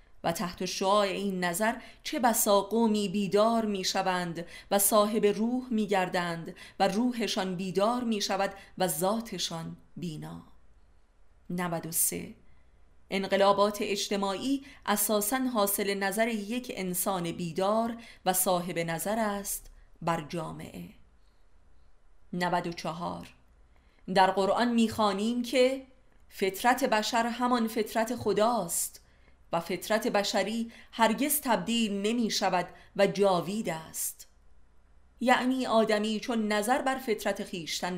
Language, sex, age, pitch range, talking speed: Persian, female, 30-49, 170-220 Hz, 100 wpm